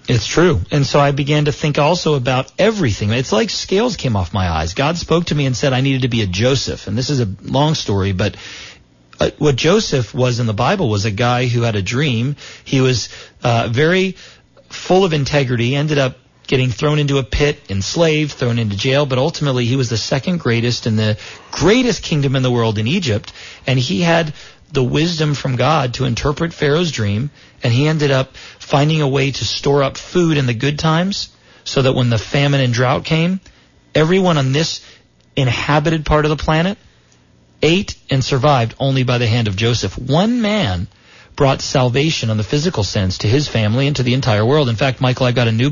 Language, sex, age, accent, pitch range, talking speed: English, male, 40-59, American, 115-145 Hz, 205 wpm